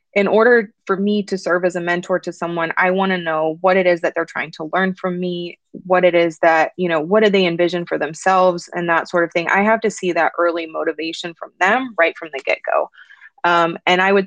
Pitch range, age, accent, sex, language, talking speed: 165-200 Hz, 20-39, American, female, English, 250 wpm